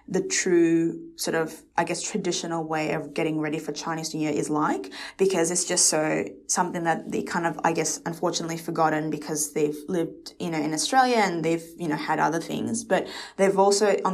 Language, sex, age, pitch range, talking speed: English, female, 20-39, 155-180 Hz, 205 wpm